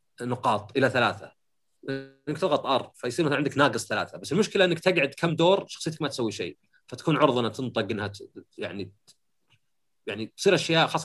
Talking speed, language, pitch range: 165 wpm, Arabic, 110-155 Hz